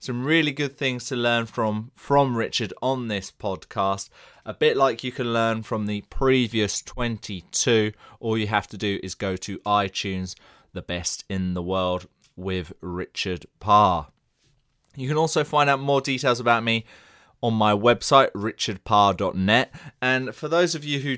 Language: English